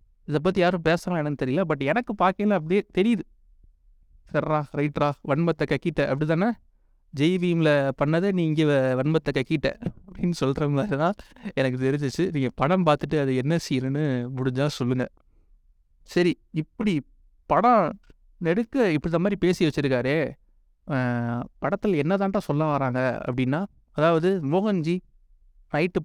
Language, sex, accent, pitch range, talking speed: Tamil, male, native, 130-170 Hz, 115 wpm